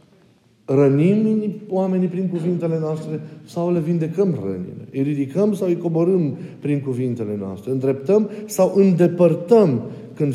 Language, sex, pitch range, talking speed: Romanian, male, 135-180 Hz, 120 wpm